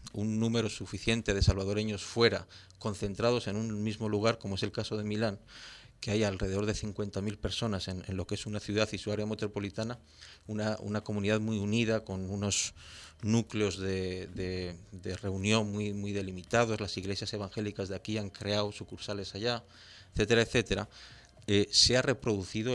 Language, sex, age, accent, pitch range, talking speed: Spanish, male, 40-59, Spanish, 100-115 Hz, 170 wpm